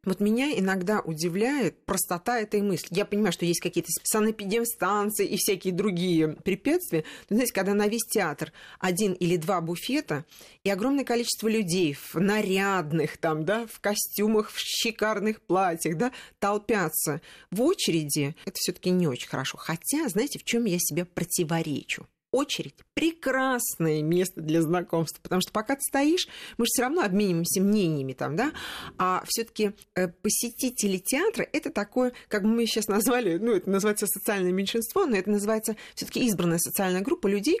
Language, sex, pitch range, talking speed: Russian, female, 180-230 Hz, 160 wpm